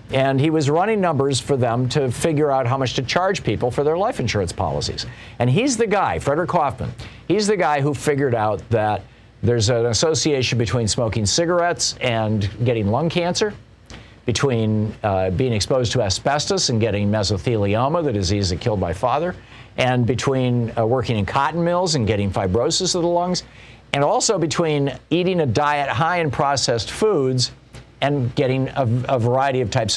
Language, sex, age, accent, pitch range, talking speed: English, male, 50-69, American, 115-150 Hz, 175 wpm